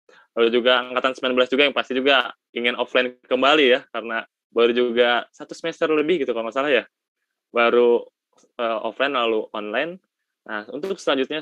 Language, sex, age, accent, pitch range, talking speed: Indonesian, male, 20-39, native, 115-140 Hz, 165 wpm